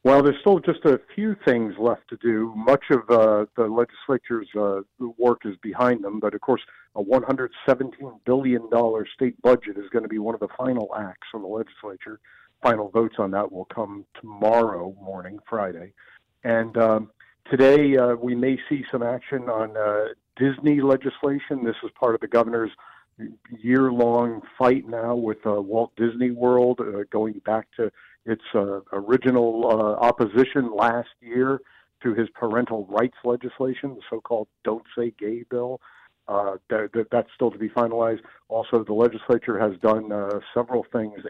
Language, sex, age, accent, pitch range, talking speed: English, male, 50-69, American, 105-125 Hz, 165 wpm